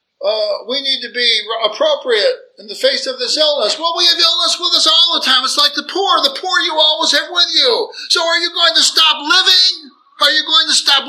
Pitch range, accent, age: 255-345 Hz, American, 50-69